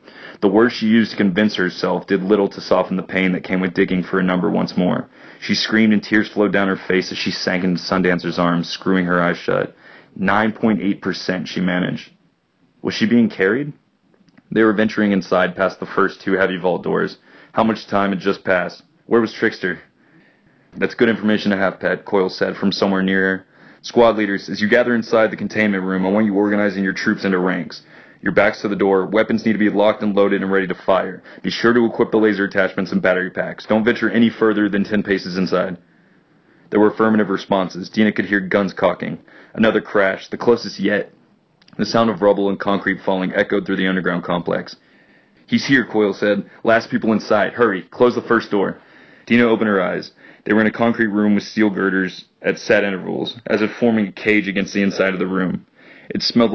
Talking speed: 210 wpm